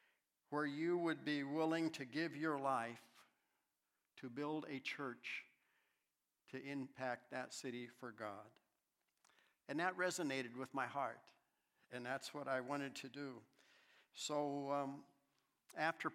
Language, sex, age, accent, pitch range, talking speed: English, male, 60-79, American, 135-160 Hz, 130 wpm